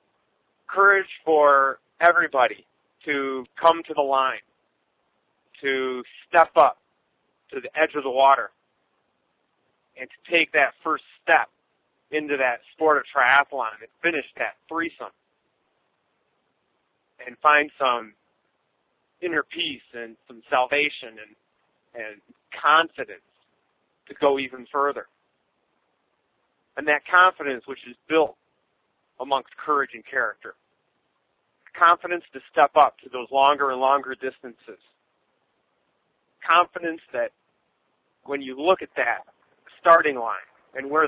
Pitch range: 130-160 Hz